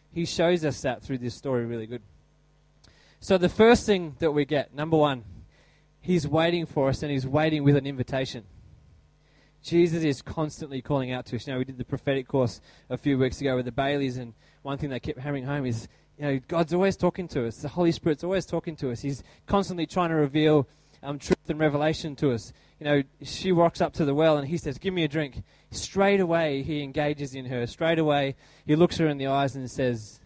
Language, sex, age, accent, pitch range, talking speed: English, male, 20-39, Australian, 125-160 Hz, 220 wpm